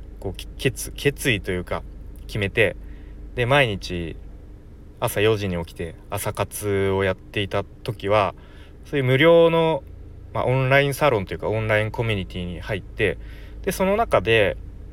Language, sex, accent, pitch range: Japanese, male, native, 90-125 Hz